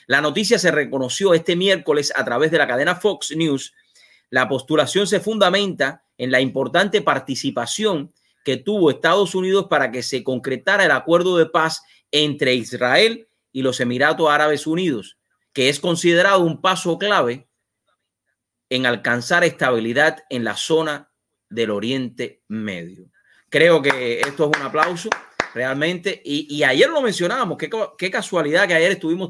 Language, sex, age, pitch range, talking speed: English, male, 30-49, 135-185 Hz, 150 wpm